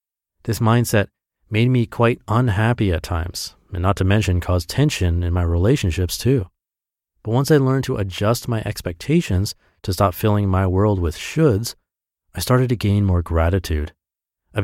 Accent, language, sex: American, English, male